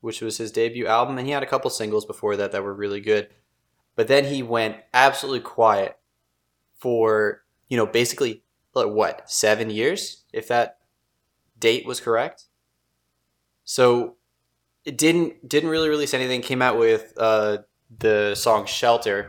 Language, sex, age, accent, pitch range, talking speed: English, male, 20-39, American, 100-125 Hz, 155 wpm